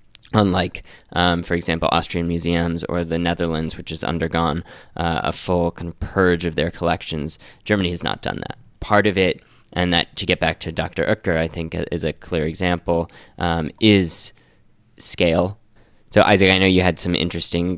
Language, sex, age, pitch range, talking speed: English, male, 10-29, 85-90 Hz, 180 wpm